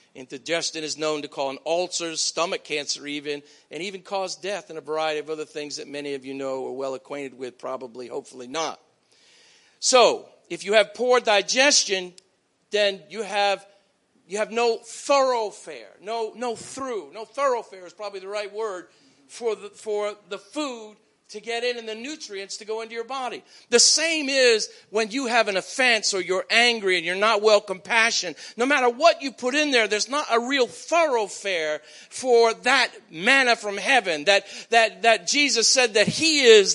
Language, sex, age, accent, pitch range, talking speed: English, male, 50-69, American, 190-250 Hz, 180 wpm